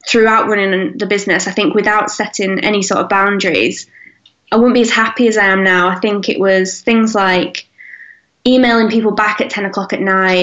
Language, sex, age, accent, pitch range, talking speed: English, female, 10-29, British, 185-225 Hz, 200 wpm